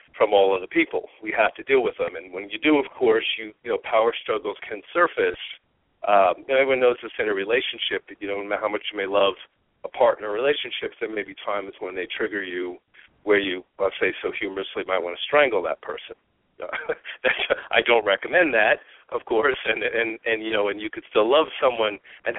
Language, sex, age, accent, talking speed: English, male, 50-69, American, 220 wpm